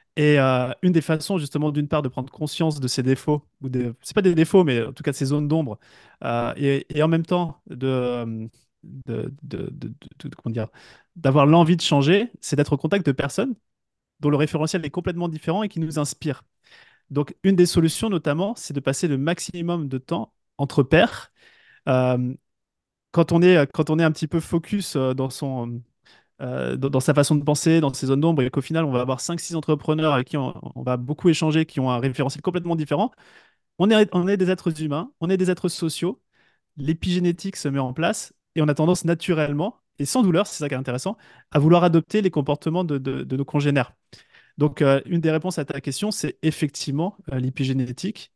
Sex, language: male, French